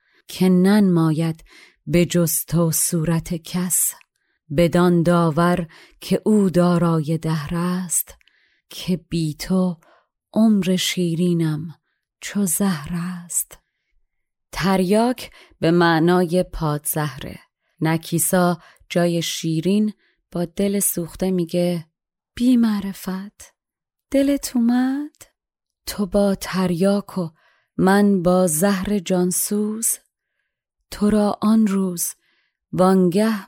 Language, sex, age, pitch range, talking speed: Persian, female, 30-49, 175-210 Hz, 90 wpm